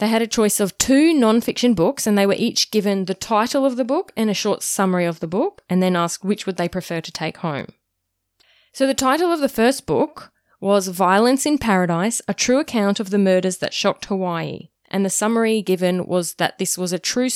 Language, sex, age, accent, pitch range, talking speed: English, female, 10-29, Australian, 175-225 Hz, 225 wpm